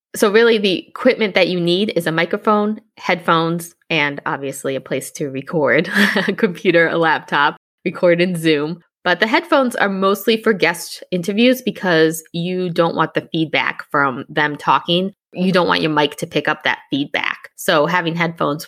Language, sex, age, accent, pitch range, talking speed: English, female, 20-39, American, 160-225 Hz, 175 wpm